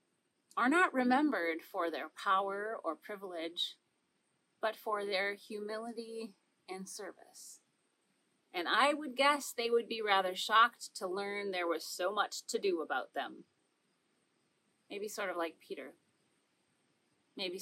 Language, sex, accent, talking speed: English, female, American, 135 wpm